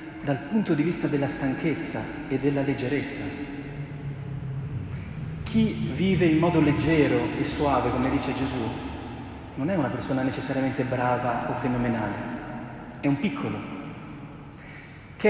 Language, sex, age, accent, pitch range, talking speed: Italian, male, 40-59, native, 130-155 Hz, 120 wpm